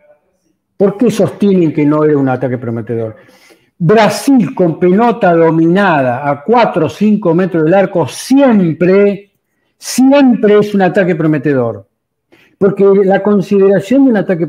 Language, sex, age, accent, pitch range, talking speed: Spanish, male, 60-79, Argentinian, 150-205 Hz, 135 wpm